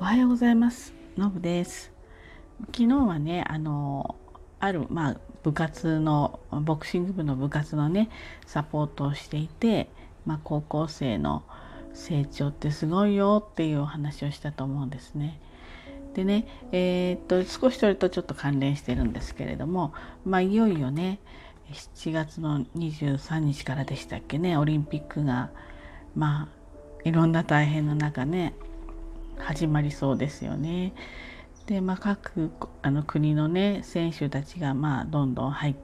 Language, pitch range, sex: Japanese, 140-175 Hz, female